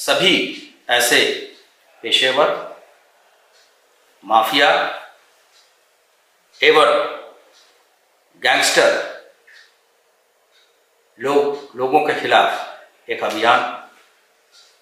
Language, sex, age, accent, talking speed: Hindi, male, 60-79, native, 50 wpm